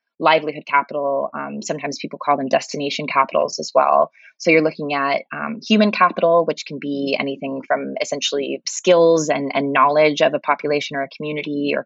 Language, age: English, 20-39